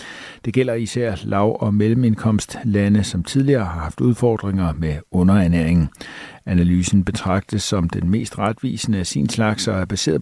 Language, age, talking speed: Danish, 50-69, 145 wpm